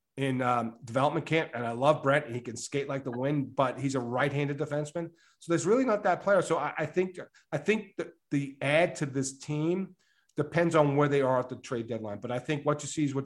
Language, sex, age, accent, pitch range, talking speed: English, male, 40-59, American, 140-170 Hz, 250 wpm